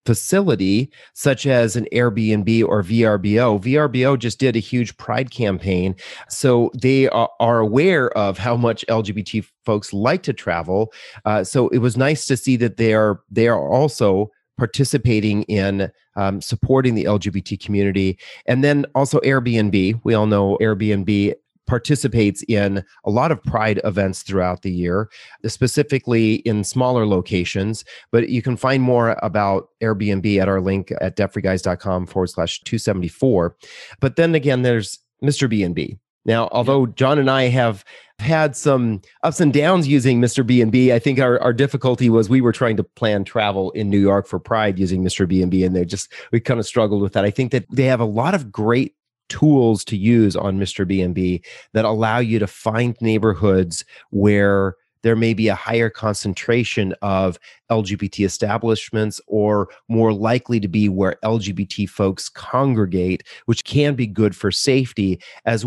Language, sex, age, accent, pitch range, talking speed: English, male, 30-49, American, 100-125 Hz, 165 wpm